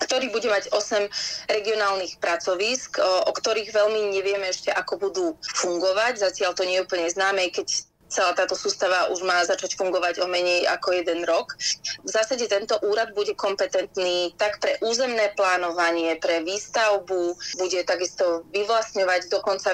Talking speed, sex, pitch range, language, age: 150 wpm, female, 180-210 Hz, Slovak, 20-39